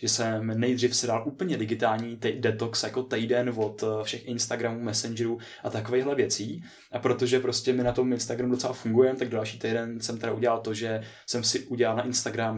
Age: 20-39